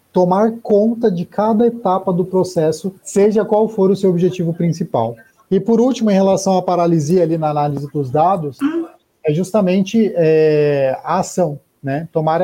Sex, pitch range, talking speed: male, 145-195 Hz, 160 wpm